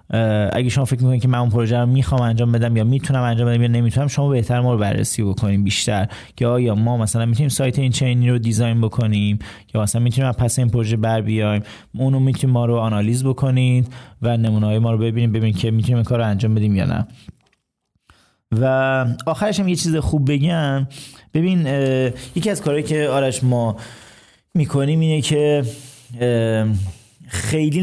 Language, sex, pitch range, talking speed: Persian, male, 110-135 Hz, 175 wpm